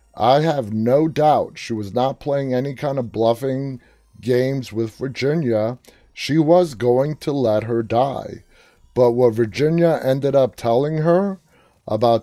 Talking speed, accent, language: 145 wpm, American, English